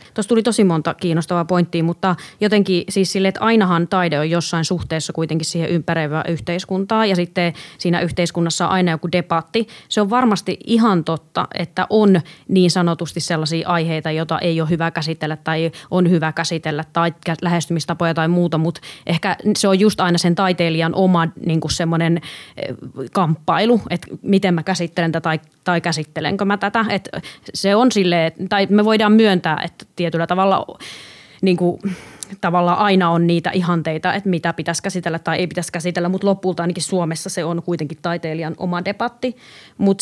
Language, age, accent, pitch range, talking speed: Finnish, 20-39, native, 165-195 Hz, 160 wpm